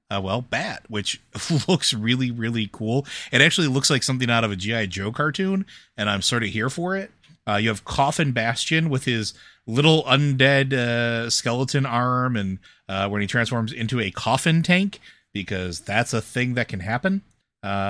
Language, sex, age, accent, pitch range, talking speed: English, male, 30-49, American, 105-135 Hz, 185 wpm